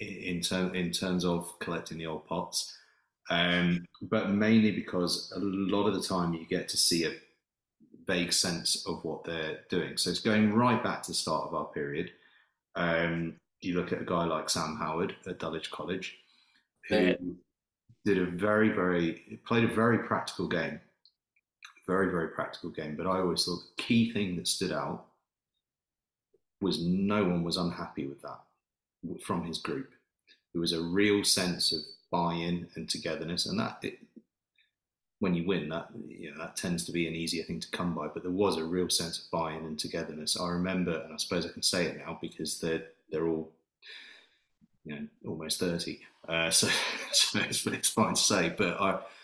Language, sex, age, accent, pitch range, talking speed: English, male, 30-49, British, 80-95 Hz, 185 wpm